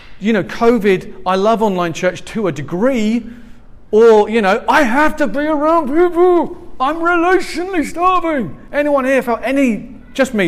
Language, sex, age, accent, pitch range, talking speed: English, male, 30-49, British, 190-275 Hz, 160 wpm